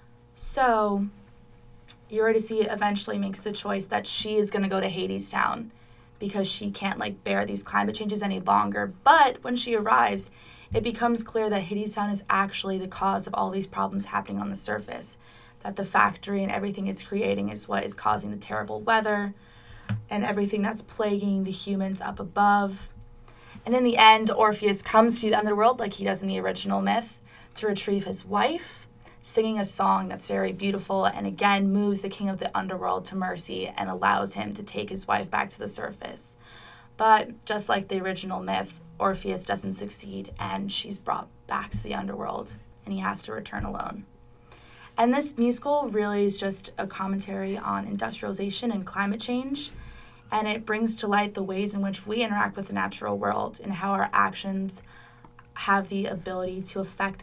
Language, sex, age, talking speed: English, female, 20-39, 185 wpm